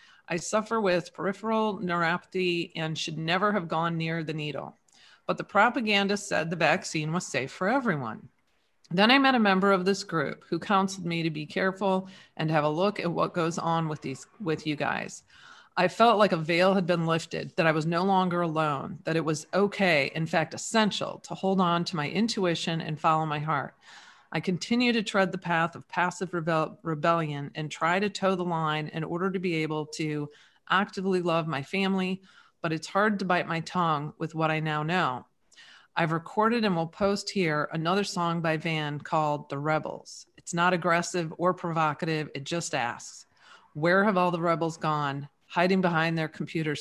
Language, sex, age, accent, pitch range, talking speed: English, female, 40-59, American, 160-190 Hz, 190 wpm